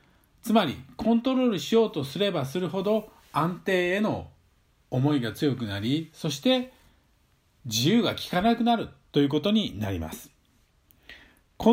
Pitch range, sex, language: 120-195 Hz, male, Japanese